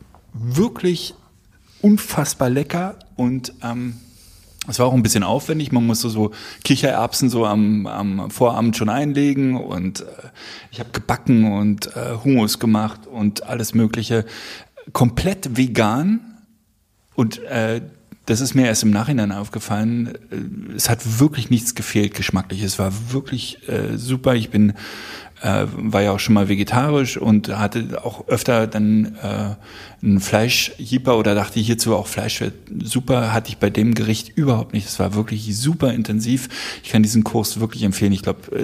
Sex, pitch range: male, 105-130 Hz